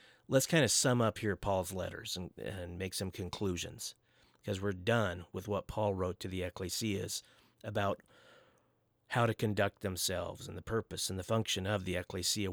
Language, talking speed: English, 175 wpm